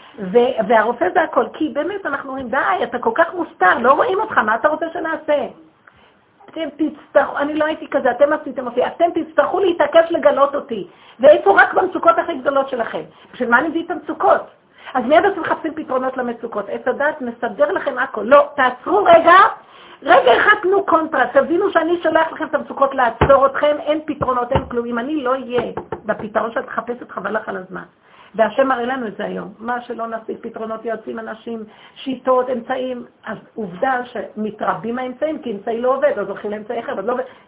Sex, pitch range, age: female, 230-325 Hz, 50-69